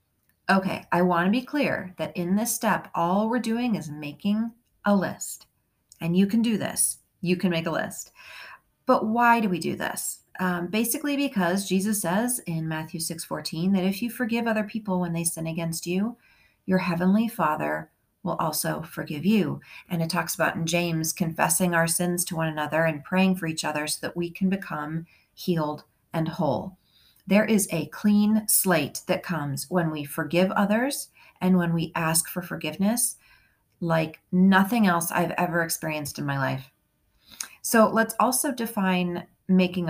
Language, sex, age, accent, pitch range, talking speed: English, female, 40-59, American, 160-205 Hz, 175 wpm